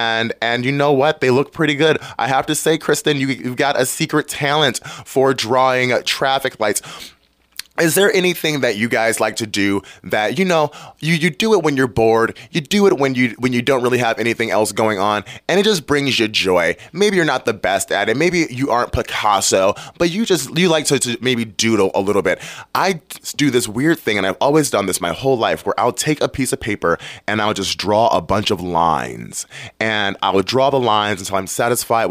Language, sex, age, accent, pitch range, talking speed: English, male, 20-39, American, 110-155 Hz, 225 wpm